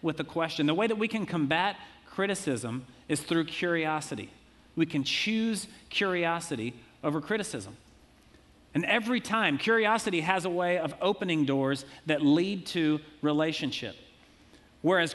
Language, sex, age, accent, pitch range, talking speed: English, male, 40-59, American, 145-175 Hz, 135 wpm